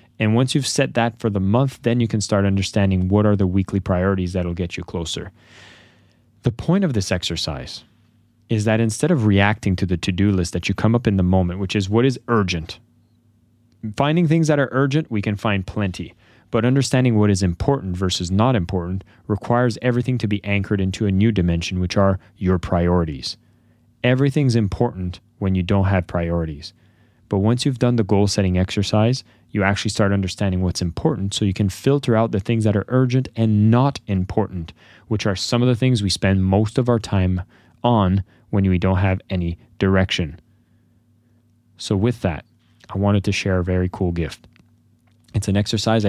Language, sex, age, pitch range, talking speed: English, male, 30-49, 95-115 Hz, 190 wpm